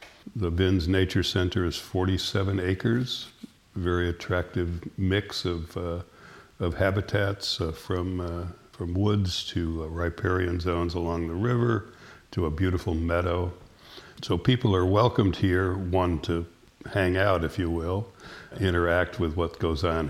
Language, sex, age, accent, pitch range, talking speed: English, male, 60-79, American, 85-95 Hz, 145 wpm